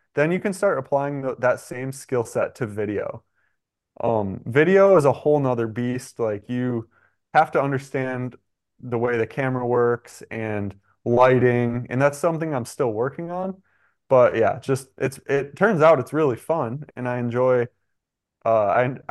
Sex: male